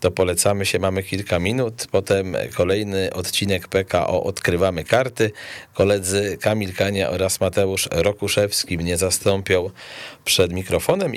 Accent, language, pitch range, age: native, Polish, 90-105 Hz, 40-59